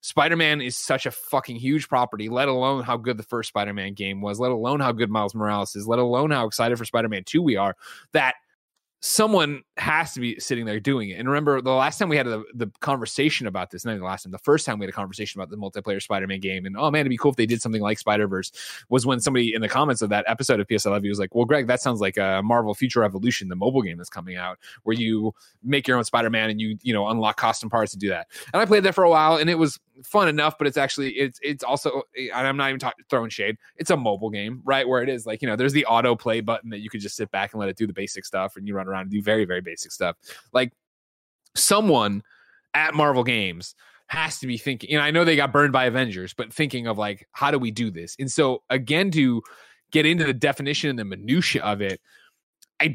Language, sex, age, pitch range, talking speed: English, male, 20-39, 105-140 Hz, 260 wpm